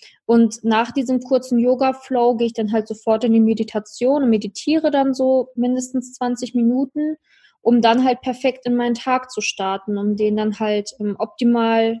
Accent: German